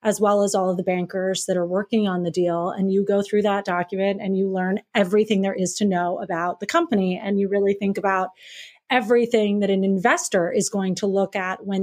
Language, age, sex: English, 30-49, female